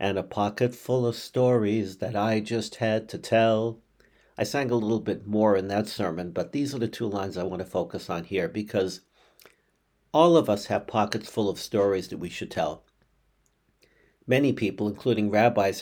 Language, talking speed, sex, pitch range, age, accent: English, 190 wpm, male, 100-125 Hz, 60-79, American